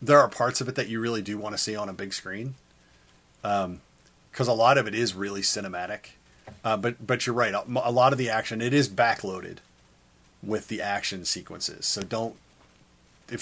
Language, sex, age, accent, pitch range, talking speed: English, male, 30-49, American, 100-125 Hz, 200 wpm